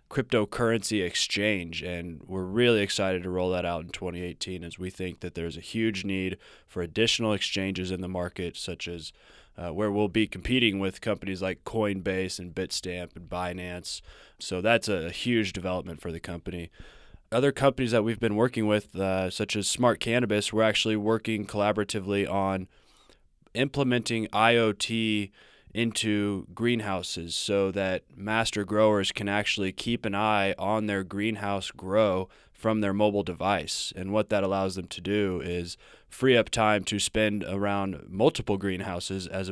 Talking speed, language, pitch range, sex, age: 160 wpm, English, 90-105 Hz, male, 20-39